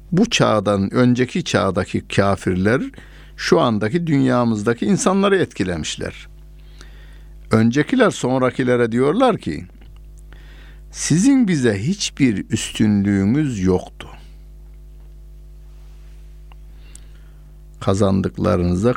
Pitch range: 85-120 Hz